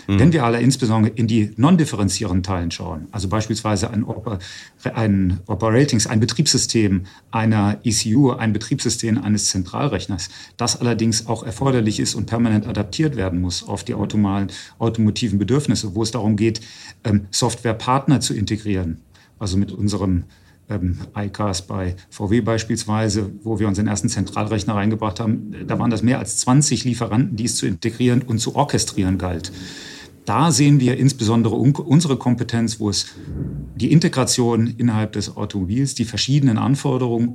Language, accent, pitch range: German, German, 100-125 Hz